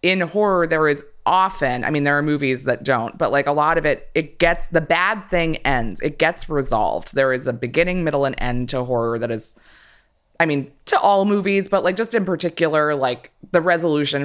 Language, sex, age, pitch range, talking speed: English, female, 20-39, 130-175 Hz, 215 wpm